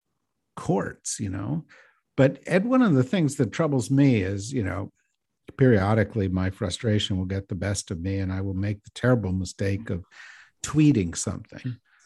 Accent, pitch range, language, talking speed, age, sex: American, 105-130 Hz, English, 170 wpm, 50-69, male